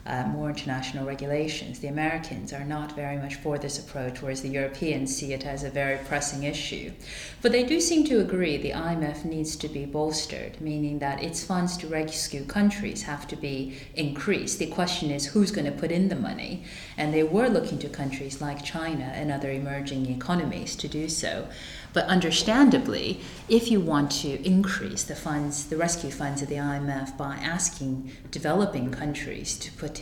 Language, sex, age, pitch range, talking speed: English, female, 40-59, 140-165 Hz, 185 wpm